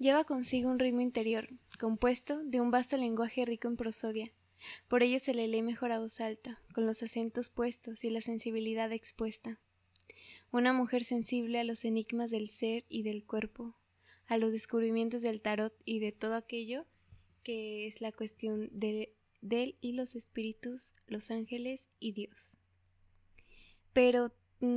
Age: 20-39